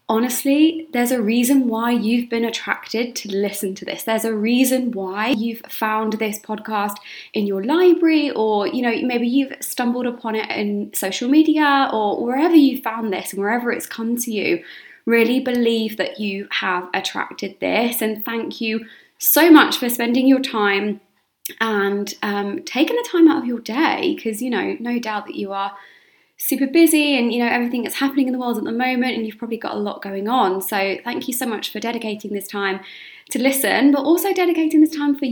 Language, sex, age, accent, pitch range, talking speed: English, female, 20-39, British, 210-275 Hz, 200 wpm